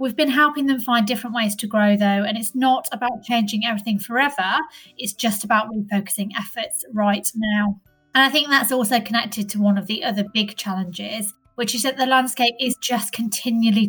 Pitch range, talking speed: 205-240 Hz, 195 wpm